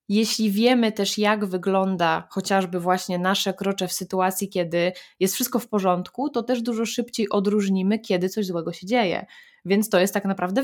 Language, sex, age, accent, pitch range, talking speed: Polish, female, 20-39, native, 180-225 Hz, 175 wpm